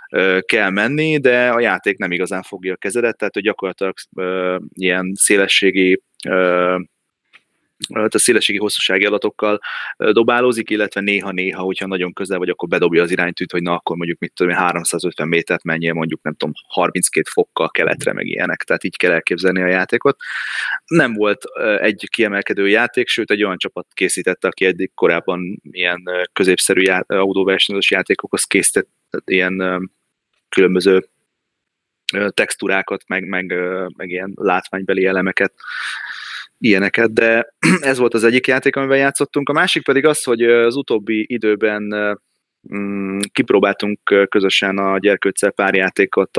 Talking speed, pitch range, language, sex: 135 wpm, 90-110 Hz, Hungarian, male